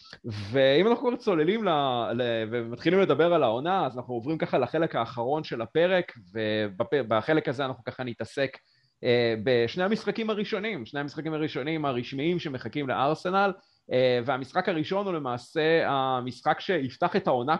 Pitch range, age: 120-165 Hz, 30-49